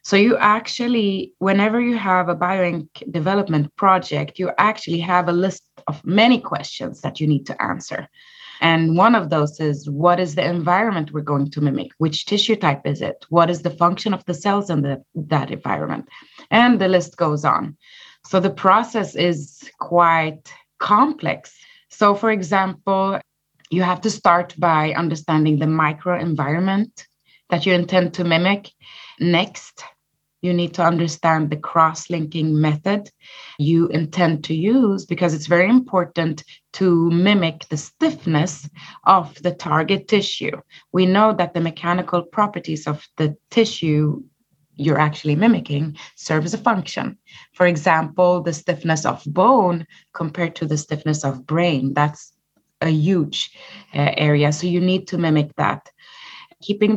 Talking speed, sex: 150 wpm, female